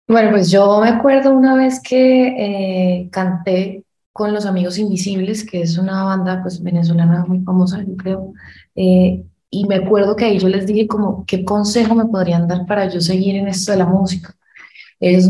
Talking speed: 190 wpm